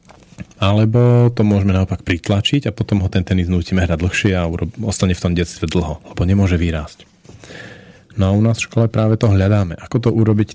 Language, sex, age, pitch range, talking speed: Slovak, male, 40-59, 90-110 Hz, 200 wpm